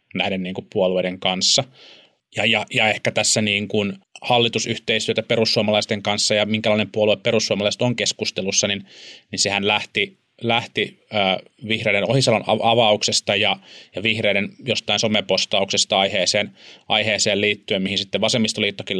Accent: native